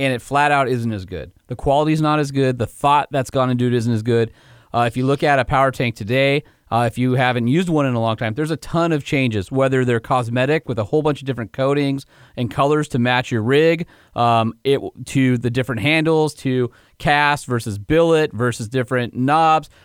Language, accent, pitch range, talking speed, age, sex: English, American, 125-155 Hz, 225 wpm, 30-49, male